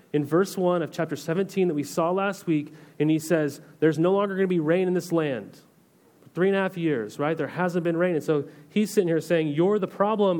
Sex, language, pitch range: male, English, 160-210 Hz